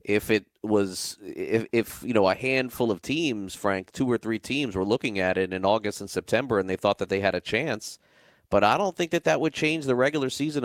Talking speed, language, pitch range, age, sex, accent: 240 wpm, English, 100-125 Hz, 30-49, male, American